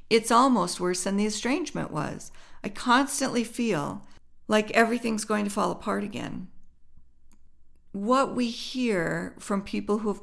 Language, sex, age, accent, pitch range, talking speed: English, female, 50-69, American, 170-225 Hz, 140 wpm